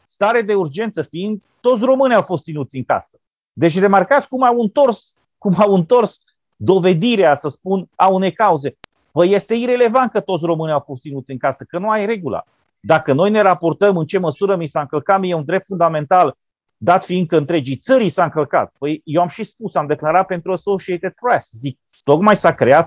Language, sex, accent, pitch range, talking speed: Romanian, male, native, 155-215 Hz, 200 wpm